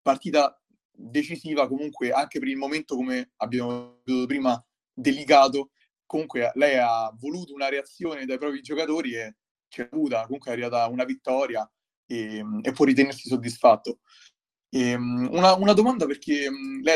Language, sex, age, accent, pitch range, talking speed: Italian, male, 30-49, native, 130-165 Hz, 140 wpm